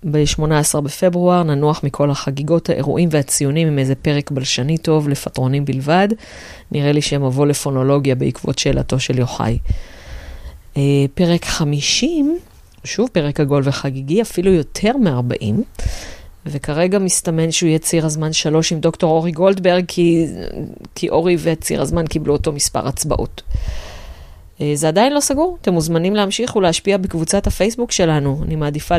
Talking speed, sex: 135 wpm, female